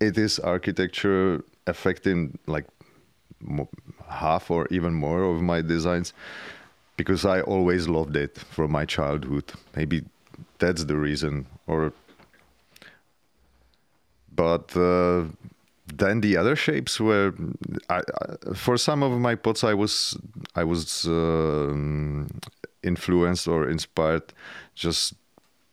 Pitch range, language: 80-95 Hz, English